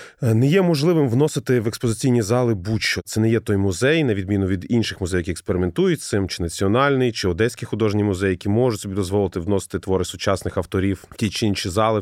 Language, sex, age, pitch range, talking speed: Ukrainian, male, 30-49, 95-130 Hz, 205 wpm